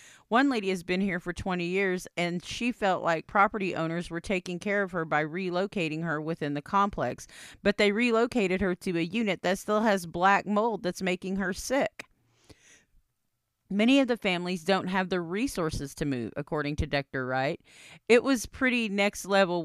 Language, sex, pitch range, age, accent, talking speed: English, female, 170-205 Hz, 40-59, American, 185 wpm